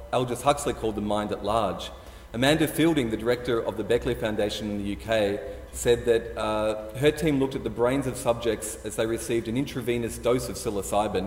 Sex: male